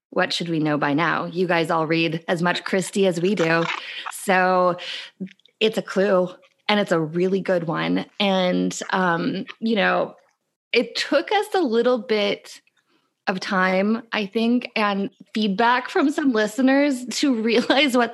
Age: 20-39